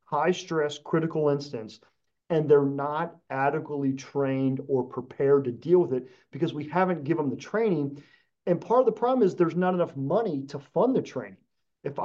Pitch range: 130-160 Hz